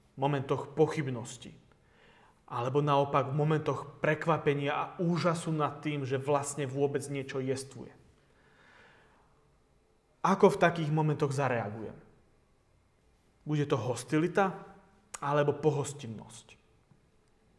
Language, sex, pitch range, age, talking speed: Slovak, male, 130-160 Hz, 30-49, 90 wpm